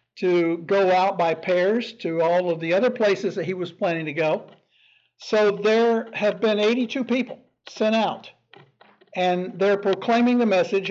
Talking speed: 165 wpm